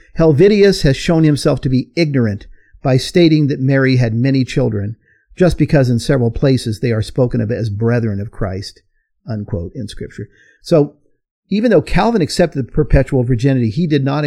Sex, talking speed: male, 175 wpm